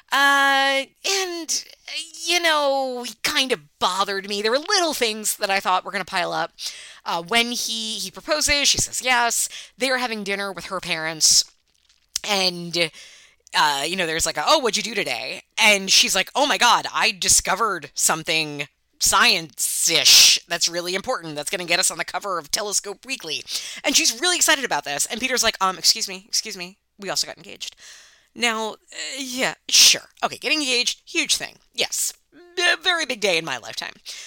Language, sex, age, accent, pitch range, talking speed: English, female, 20-39, American, 180-255 Hz, 185 wpm